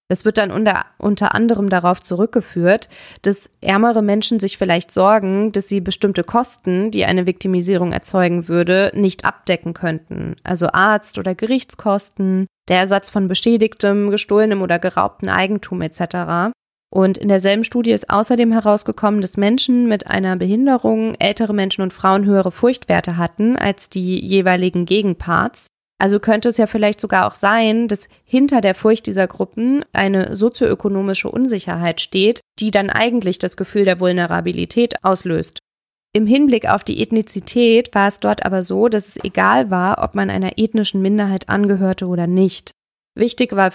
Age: 20-39